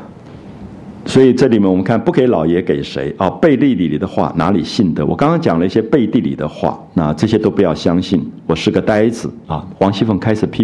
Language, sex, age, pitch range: Chinese, male, 50-69, 95-120 Hz